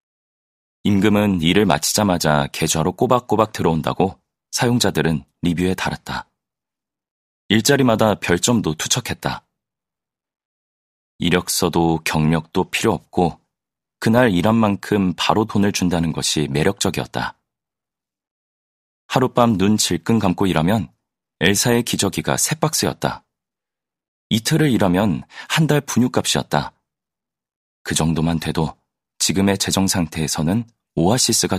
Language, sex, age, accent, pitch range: Korean, male, 30-49, native, 80-110 Hz